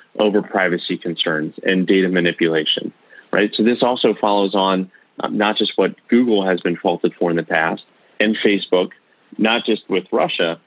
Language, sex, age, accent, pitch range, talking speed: English, male, 30-49, American, 95-110 Hz, 170 wpm